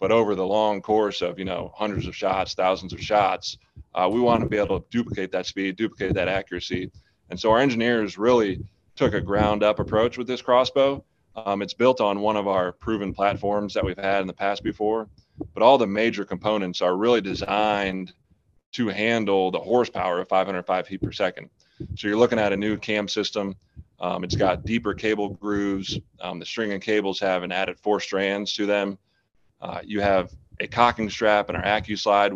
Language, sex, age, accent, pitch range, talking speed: English, male, 30-49, American, 95-110 Hz, 195 wpm